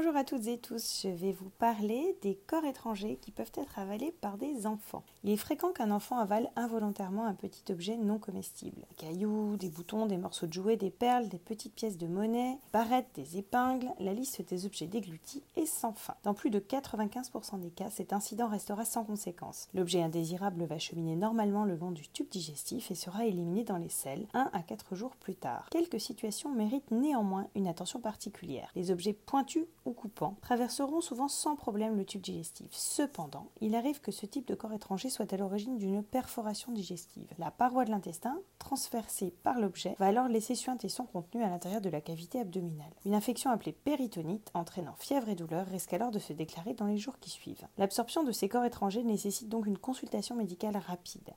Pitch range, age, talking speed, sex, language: 185-240 Hz, 30-49, 200 wpm, female, French